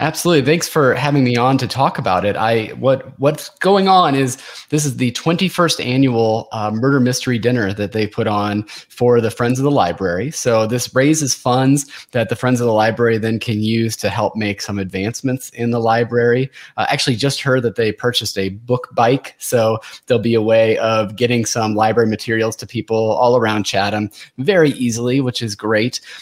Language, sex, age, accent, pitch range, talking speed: English, male, 30-49, American, 110-140 Hz, 195 wpm